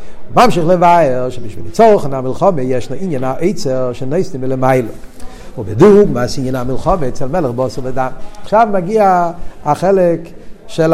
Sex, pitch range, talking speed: male, 120-165 Hz, 120 wpm